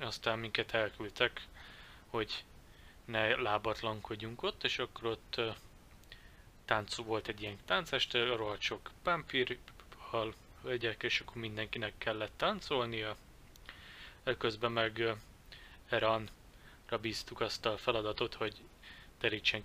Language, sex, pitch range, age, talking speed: Hungarian, male, 105-125 Hz, 20-39, 100 wpm